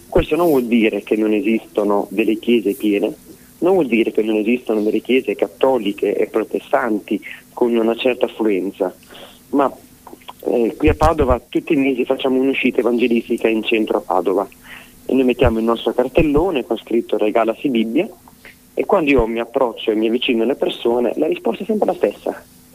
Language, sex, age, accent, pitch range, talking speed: Italian, male, 30-49, native, 110-135 Hz, 175 wpm